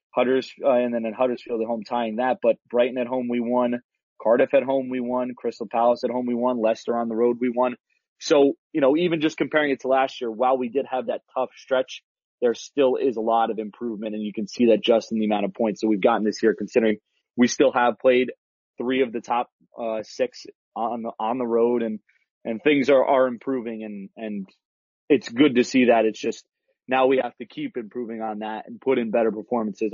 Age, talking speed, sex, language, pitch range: 20-39, 235 wpm, male, English, 110-135 Hz